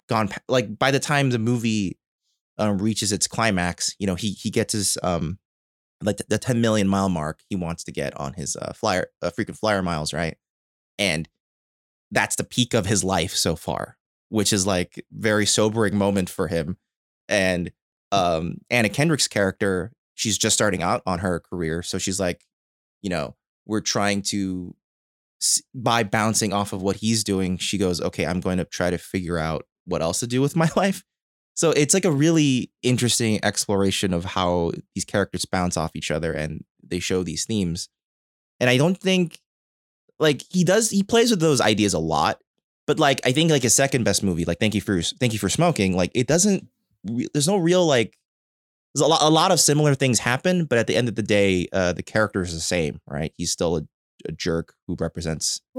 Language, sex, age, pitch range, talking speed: English, male, 20-39, 85-120 Hz, 200 wpm